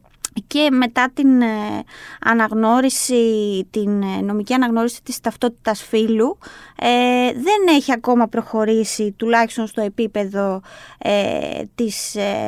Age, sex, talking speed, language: 20-39, female, 85 wpm, Greek